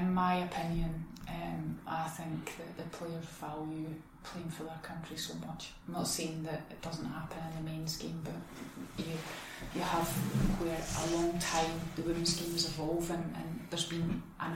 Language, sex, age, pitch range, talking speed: English, female, 20-39, 160-175 Hz, 185 wpm